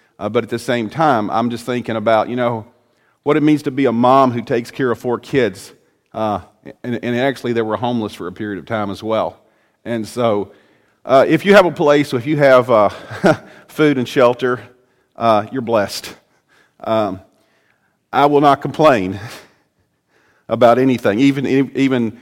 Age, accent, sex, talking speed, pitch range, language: 40-59, American, male, 180 wpm, 110-130 Hz, English